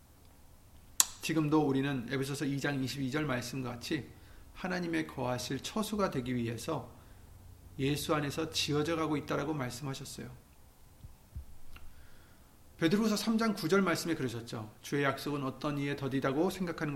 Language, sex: Korean, male